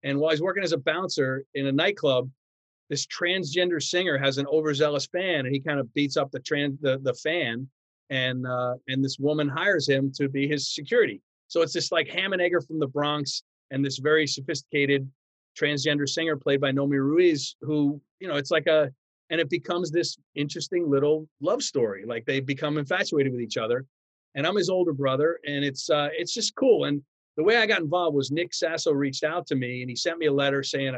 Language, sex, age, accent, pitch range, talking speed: English, male, 40-59, American, 135-160 Hz, 210 wpm